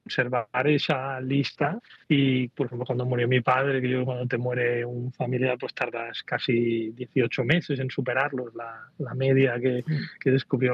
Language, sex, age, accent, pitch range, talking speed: Spanish, male, 30-49, Spanish, 125-145 Hz, 170 wpm